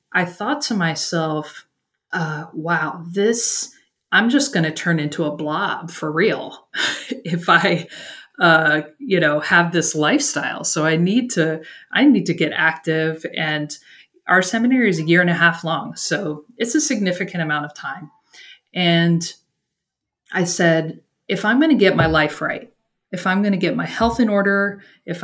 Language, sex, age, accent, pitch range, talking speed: English, female, 30-49, American, 160-195 Hz, 170 wpm